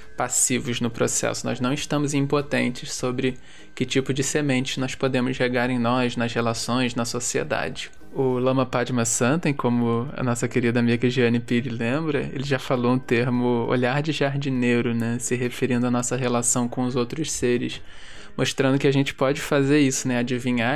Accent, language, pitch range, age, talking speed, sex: Brazilian, Portuguese, 120-140 Hz, 20-39, 175 wpm, male